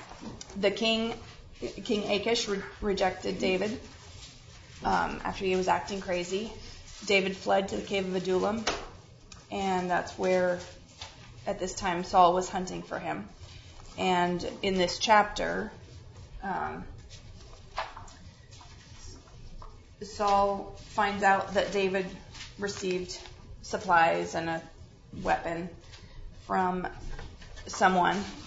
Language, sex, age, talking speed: English, female, 20-39, 100 wpm